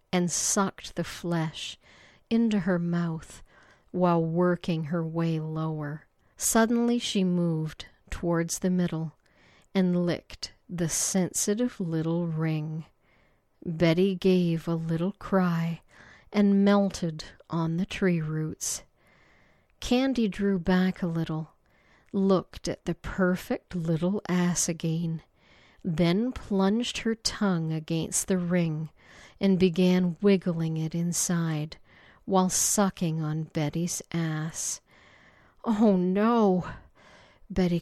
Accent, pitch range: American, 160-190 Hz